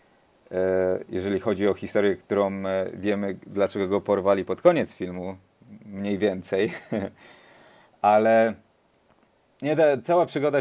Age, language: 30-49, Polish